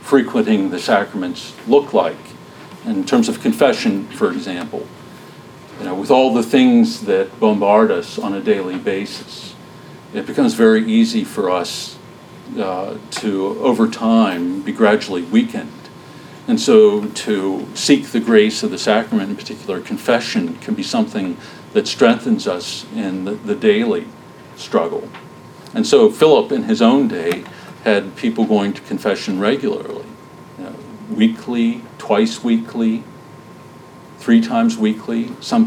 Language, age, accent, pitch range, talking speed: English, 50-69, American, 205-230 Hz, 140 wpm